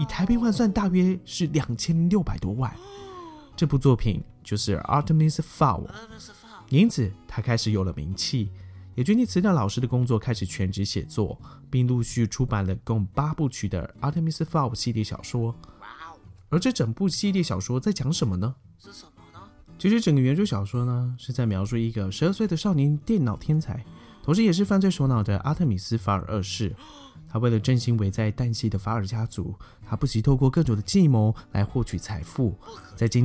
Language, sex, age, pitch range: Chinese, male, 20-39, 100-150 Hz